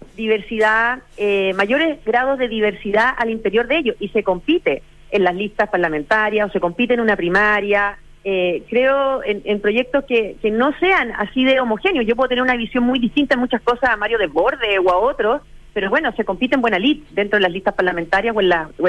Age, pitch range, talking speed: 40-59, 195-250 Hz, 215 wpm